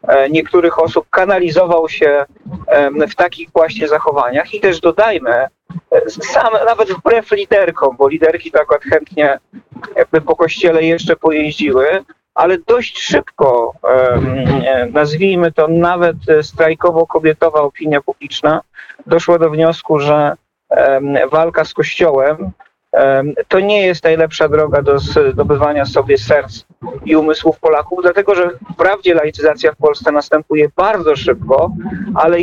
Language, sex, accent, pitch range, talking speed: Polish, male, native, 140-175 Hz, 115 wpm